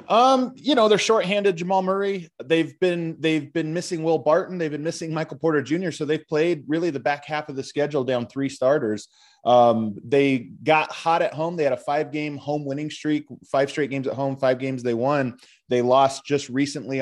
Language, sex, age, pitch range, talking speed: English, male, 20-39, 125-160 Hz, 215 wpm